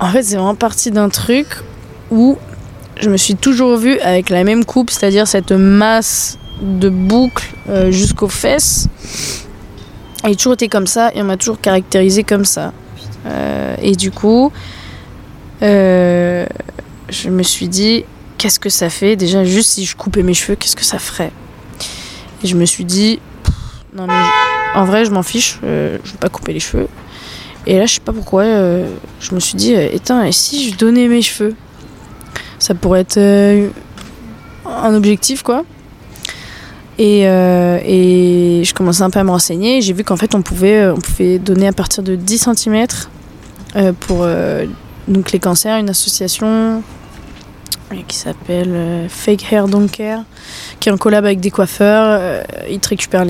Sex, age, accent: female, 20-39, French